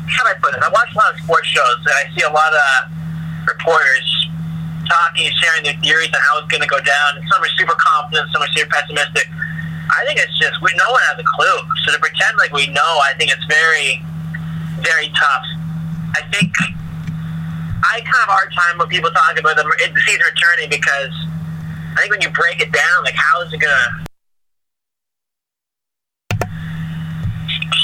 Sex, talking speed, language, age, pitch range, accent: male, 190 wpm, English, 30-49, 145-165 Hz, American